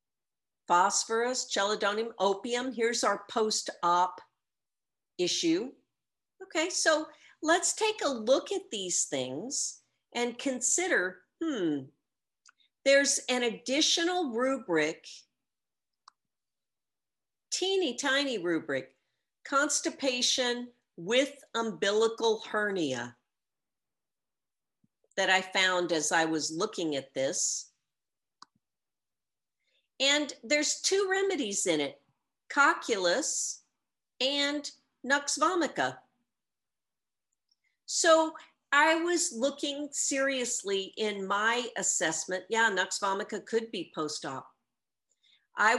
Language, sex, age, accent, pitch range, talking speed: English, female, 50-69, American, 185-285 Hz, 85 wpm